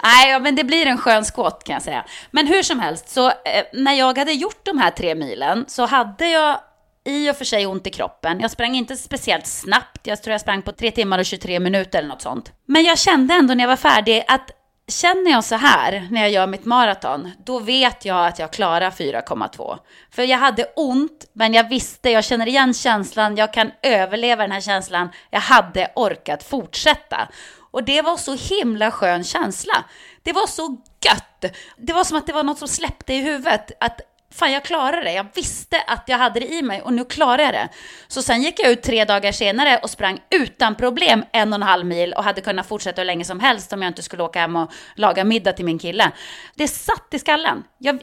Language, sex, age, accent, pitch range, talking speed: English, female, 30-49, Swedish, 205-290 Hz, 220 wpm